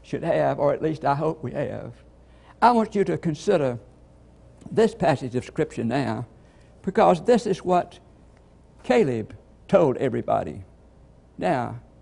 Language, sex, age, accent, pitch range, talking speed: English, male, 60-79, American, 130-190 Hz, 135 wpm